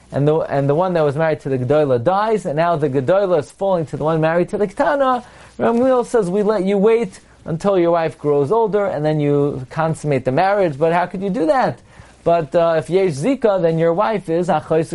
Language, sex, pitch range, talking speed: English, male, 130-185 Hz, 230 wpm